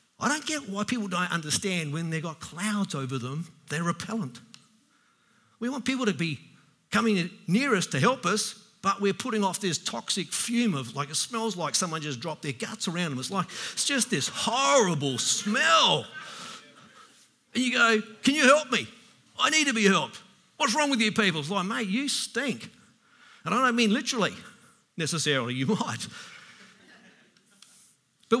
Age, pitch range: 50-69, 155-225 Hz